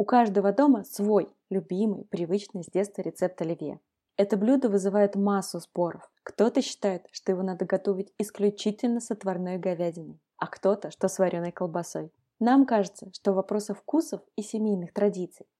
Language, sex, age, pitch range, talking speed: Russian, female, 20-39, 190-225 Hz, 150 wpm